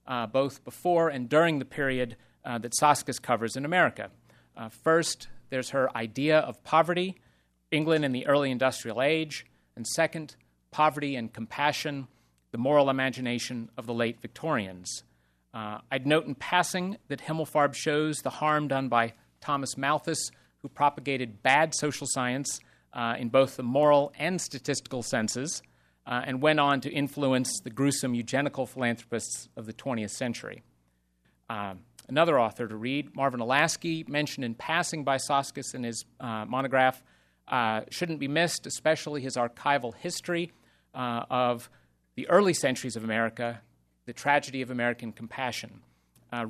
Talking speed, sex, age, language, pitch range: 150 wpm, male, 30-49, English, 115-150 Hz